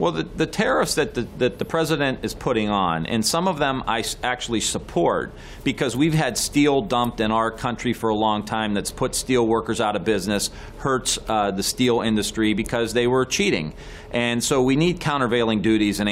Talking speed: 195 wpm